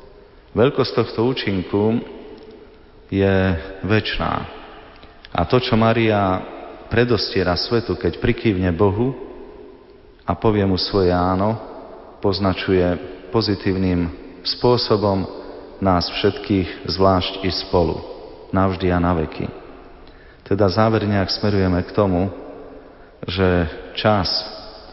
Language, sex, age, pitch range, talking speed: Slovak, male, 40-59, 90-105 Hz, 90 wpm